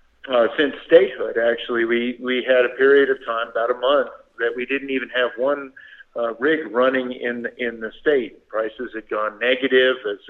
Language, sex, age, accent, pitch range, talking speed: English, male, 50-69, American, 115-140 Hz, 185 wpm